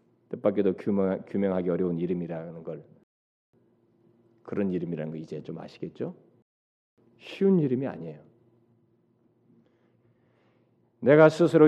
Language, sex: Korean, male